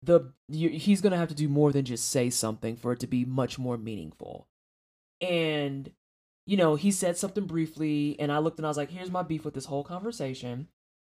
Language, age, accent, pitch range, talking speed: English, 20-39, American, 130-170 Hz, 215 wpm